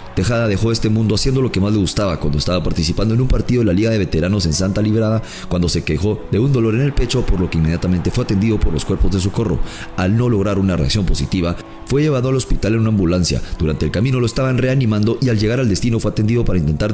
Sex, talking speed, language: male, 250 wpm, English